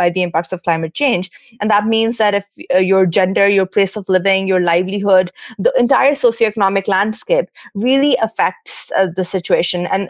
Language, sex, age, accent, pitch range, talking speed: English, female, 30-49, Indian, 190-230 Hz, 180 wpm